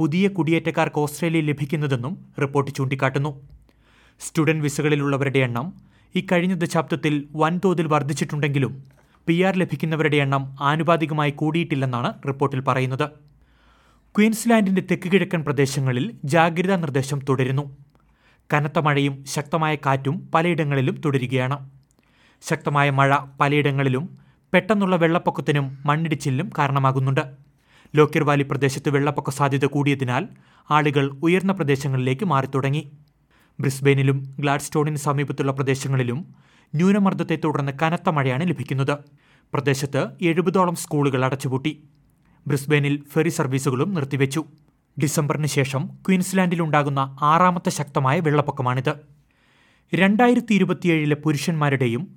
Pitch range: 140-165 Hz